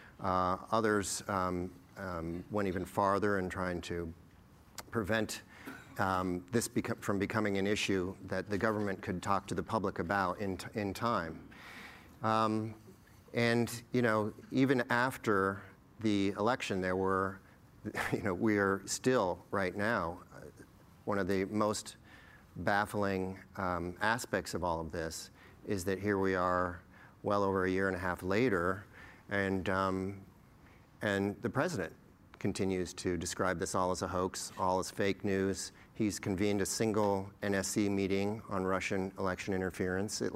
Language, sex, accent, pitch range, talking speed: English, male, American, 95-105 Hz, 145 wpm